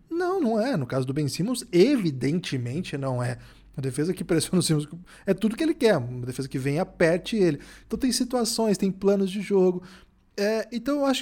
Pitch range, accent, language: 145-220 Hz, Brazilian, Portuguese